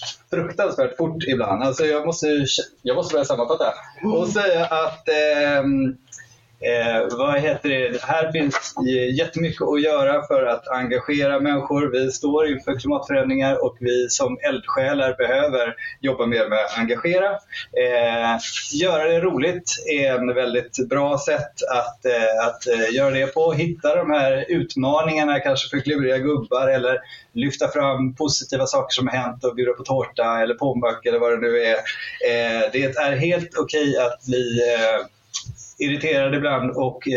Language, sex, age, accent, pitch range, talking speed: Swedish, male, 20-39, native, 120-155 Hz, 160 wpm